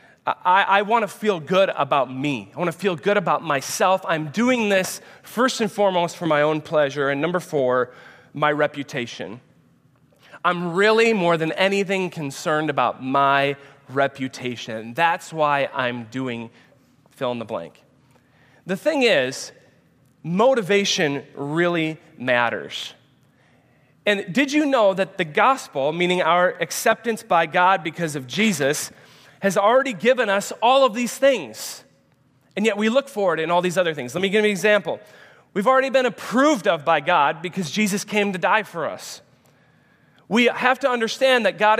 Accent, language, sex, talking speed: American, English, male, 160 wpm